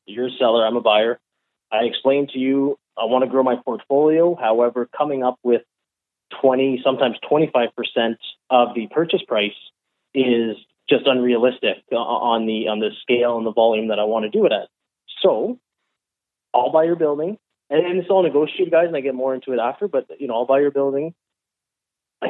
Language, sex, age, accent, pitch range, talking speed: English, male, 20-39, American, 120-140 Hz, 190 wpm